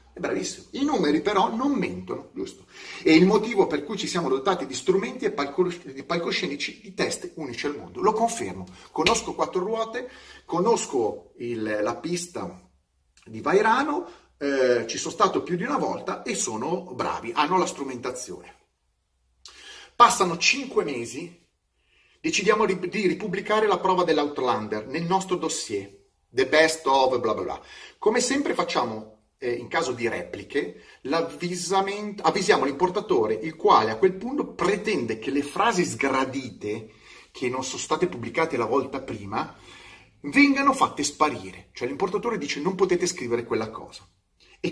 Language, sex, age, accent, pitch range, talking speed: Italian, male, 40-59, native, 130-215 Hz, 140 wpm